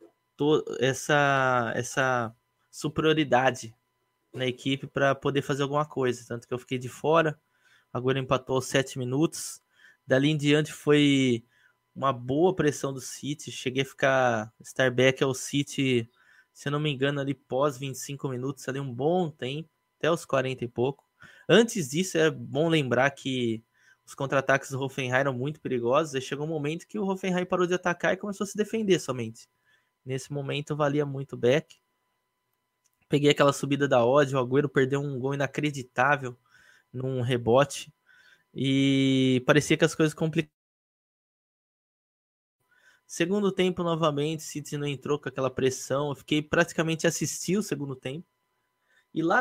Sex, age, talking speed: male, 20-39, 155 wpm